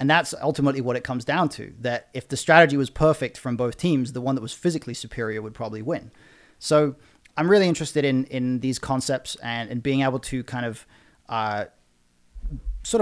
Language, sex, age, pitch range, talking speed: English, male, 30-49, 115-135 Hz, 200 wpm